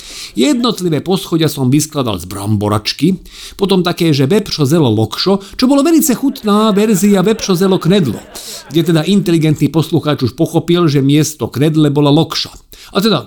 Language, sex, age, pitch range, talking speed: Slovak, male, 50-69, 130-185 Hz, 145 wpm